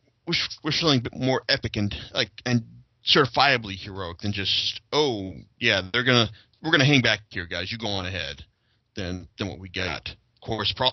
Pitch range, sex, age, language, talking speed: 105-140 Hz, male, 30-49, English, 190 wpm